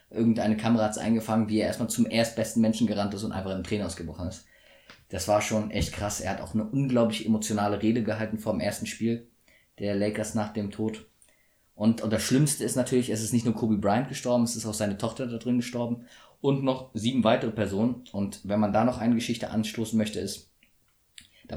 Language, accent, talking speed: German, German, 215 wpm